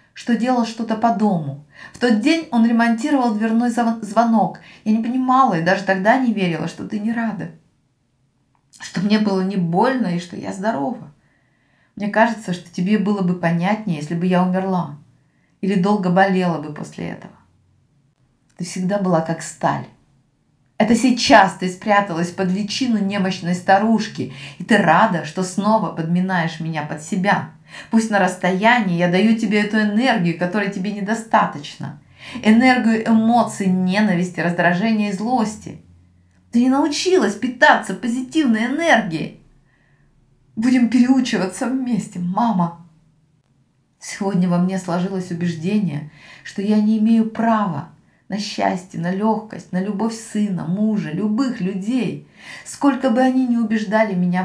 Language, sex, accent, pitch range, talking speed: Russian, female, native, 175-225 Hz, 140 wpm